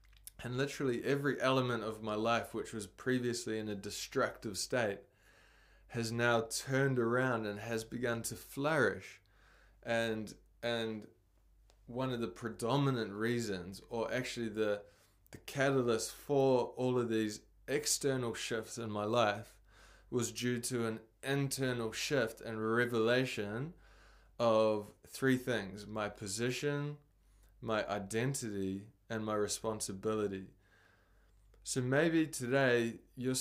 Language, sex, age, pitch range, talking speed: English, male, 20-39, 105-125 Hz, 120 wpm